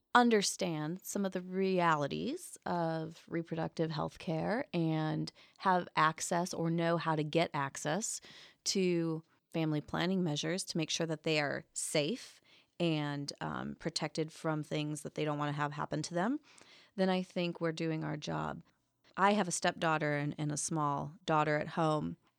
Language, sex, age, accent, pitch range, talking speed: English, female, 30-49, American, 155-195 Hz, 165 wpm